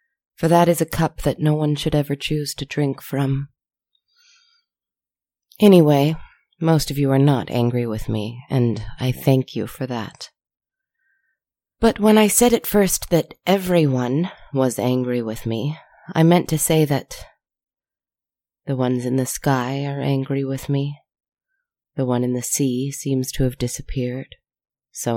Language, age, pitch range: English, 30-49, 125-160 Hz